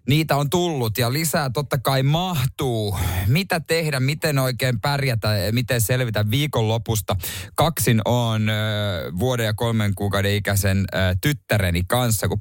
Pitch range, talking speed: 100-135 Hz, 140 wpm